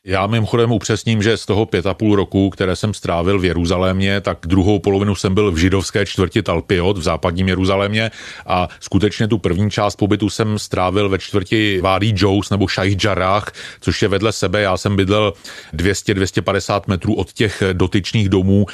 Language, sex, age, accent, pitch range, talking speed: Czech, male, 40-59, native, 95-105 Hz, 175 wpm